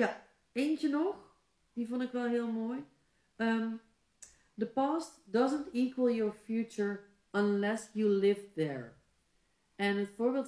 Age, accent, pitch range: 30-49, Dutch, 200-245 Hz